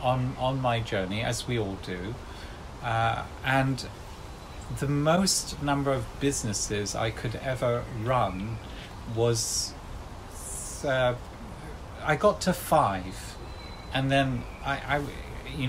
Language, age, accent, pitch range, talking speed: English, 40-59, British, 105-135 Hz, 115 wpm